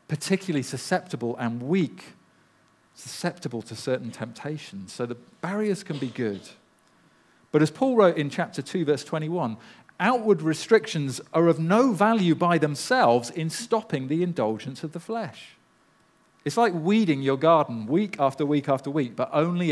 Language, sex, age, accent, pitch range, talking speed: English, male, 40-59, British, 120-175 Hz, 150 wpm